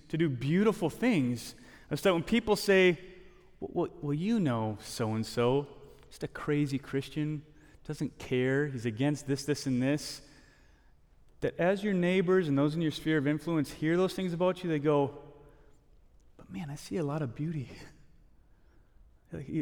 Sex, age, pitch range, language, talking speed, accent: male, 30-49, 140-180 Hz, English, 160 wpm, American